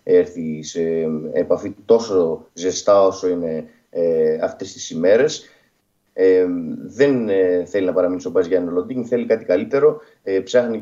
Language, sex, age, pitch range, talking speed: Greek, male, 30-49, 100-155 Hz, 140 wpm